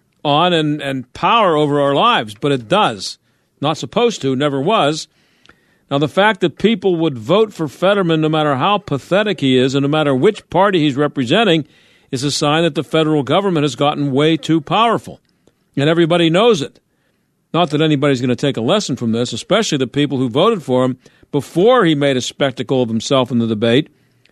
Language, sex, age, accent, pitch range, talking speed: English, male, 50-69, American, 140-180 Hz, 195 wpm